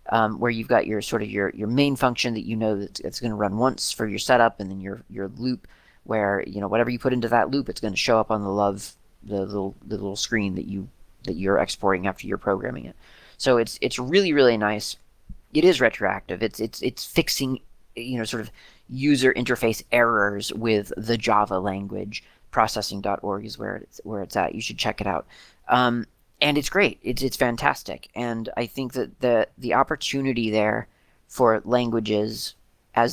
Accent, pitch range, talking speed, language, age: American, 105-125 Hz, 200 wpm, English, 30-49